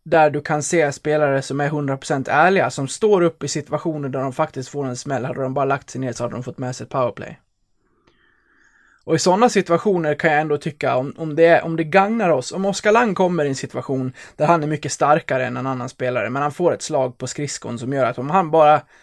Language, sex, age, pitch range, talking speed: Swedish, male, 20-39, 130-160 Hz, 245 wpm